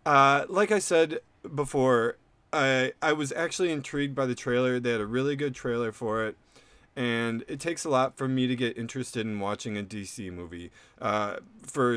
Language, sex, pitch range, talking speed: English, male, 105-135 Hz, 190 wpm